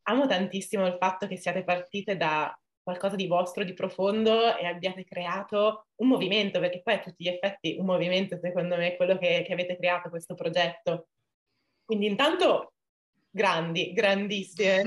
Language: Italian